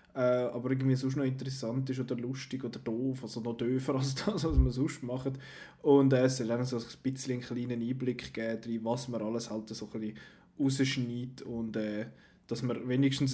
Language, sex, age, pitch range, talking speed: German, male, 20-39, 120-140 Hz, 195 wpm